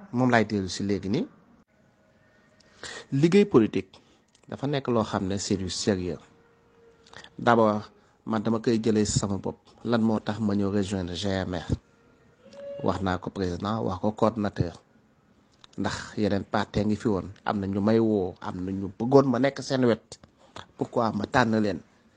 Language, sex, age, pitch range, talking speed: French, male, 30-49, 105-150 Hz, 90 wpm